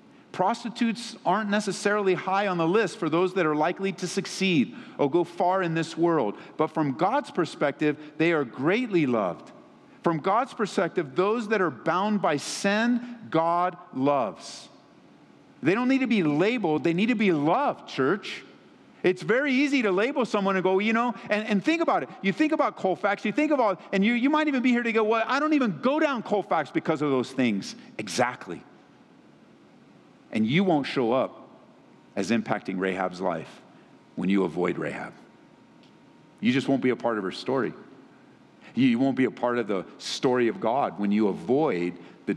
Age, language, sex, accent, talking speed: 50-69, English, male, American, 185 wpm